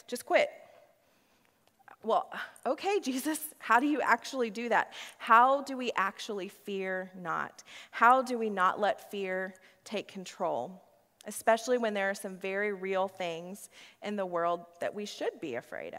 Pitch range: 200-250 Hz